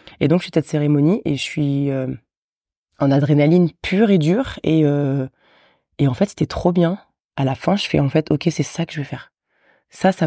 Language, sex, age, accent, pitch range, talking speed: French, female, 20-39, French, 135-160 Hz, 230 wpm